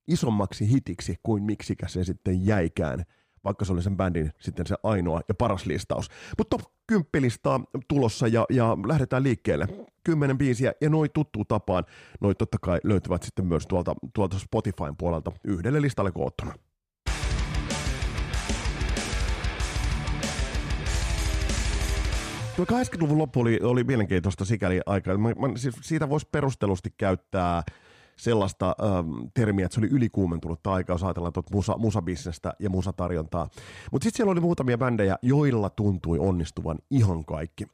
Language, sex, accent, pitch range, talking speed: Finnish, male, native, 90-115 Hz, 130 wpm